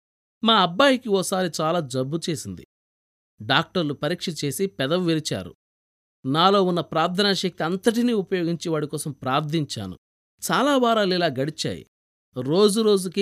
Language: Telugu